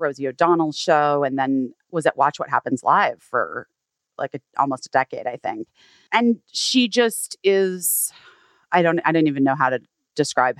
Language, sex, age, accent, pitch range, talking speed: English, female, 30-49, American, 150-200 Hz, 180 wpm